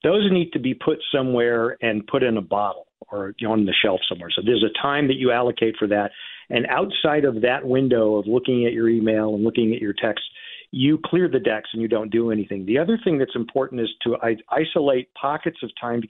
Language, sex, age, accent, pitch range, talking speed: English, male, 50-69, American, 115-160 Hz, 225 wpm